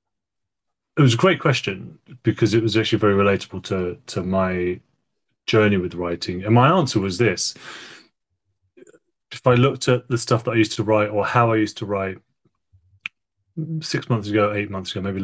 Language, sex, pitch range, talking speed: English, male, 95-125 Hz, 180 wpm